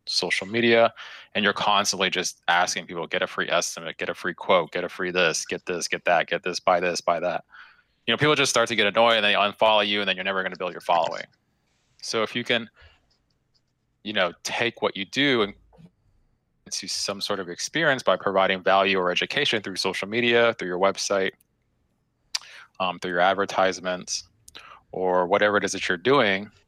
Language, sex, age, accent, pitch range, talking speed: English, male, 20-39, American, 90-110 Hz, 200 wpm